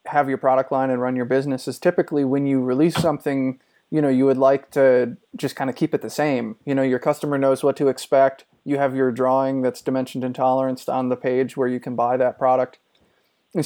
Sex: male